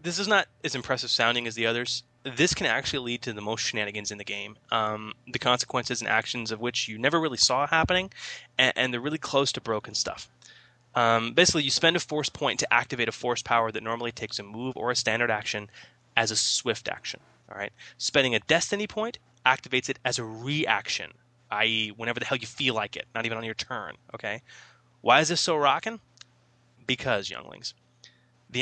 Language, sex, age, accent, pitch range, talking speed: English, male, 20-39, American, 115-135 Hz, 205 wpm